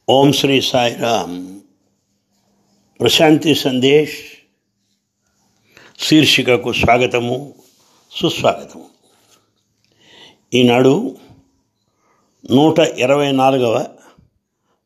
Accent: Indian